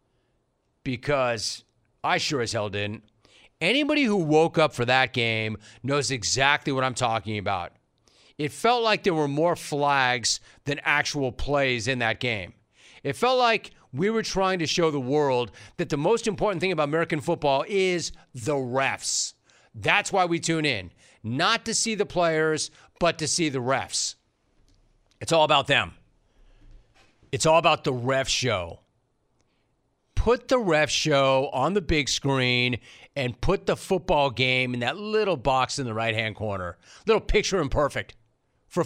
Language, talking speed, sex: English, 160 wpm, male